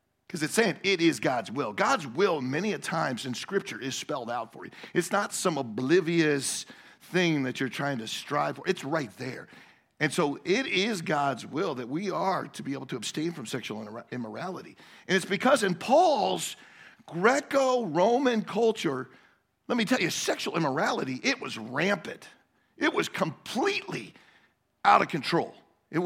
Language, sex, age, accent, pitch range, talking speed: English, male, 50-69, American, 155-225 Hz, 170 wpm